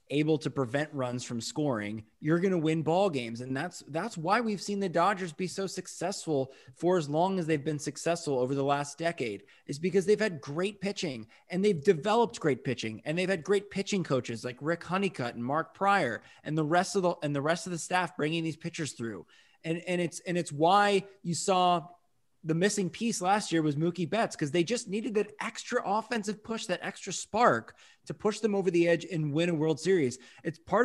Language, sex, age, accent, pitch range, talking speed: English, male, 20-39, American, 155-200 Hz, 220 wpm